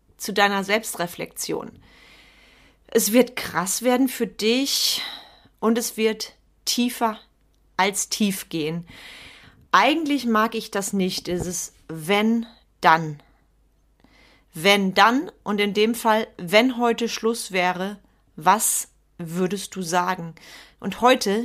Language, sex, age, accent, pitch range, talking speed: German, female, 30-49, German, 185-230 Hz, 115 wpm